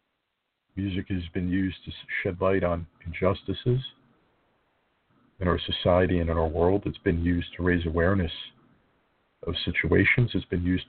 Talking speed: 150 wpm